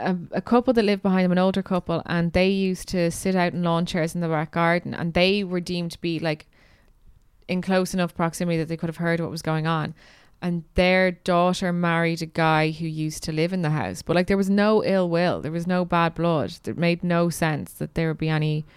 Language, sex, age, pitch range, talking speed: English, female, 20-39, 155-180 Hz, 245 wpm